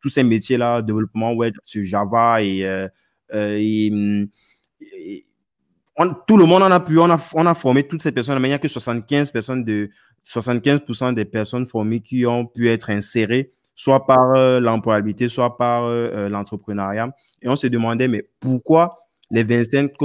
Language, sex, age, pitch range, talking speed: French, male, 20-39, 110-135 Hz, 160 wpm